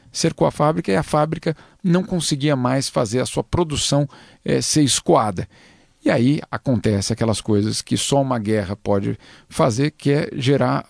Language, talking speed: Portuguese, 160 wpm